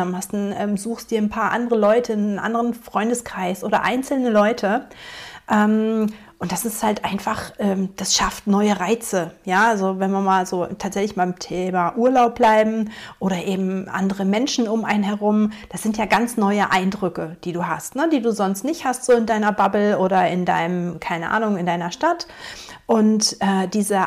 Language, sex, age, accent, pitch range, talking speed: German, female, 40-59, German, 190-225 Hz, 170 wpm